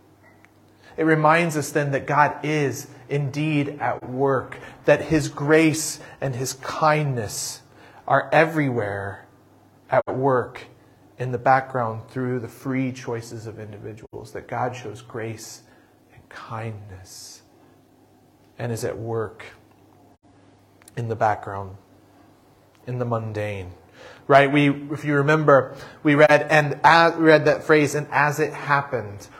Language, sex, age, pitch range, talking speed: English, male, 30-49, 115-145 Hz, 125 wpm